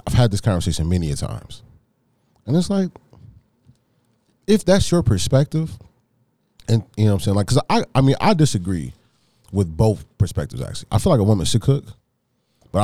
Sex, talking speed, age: male, 180 wpm, 30-49